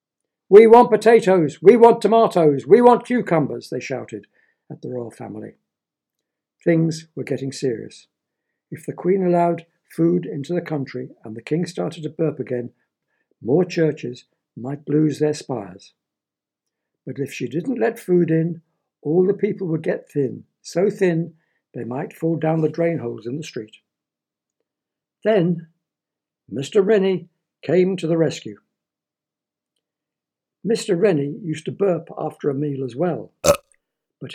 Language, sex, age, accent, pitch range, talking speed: English, male, 60-79, British, 145-185 Hz, 145 wpm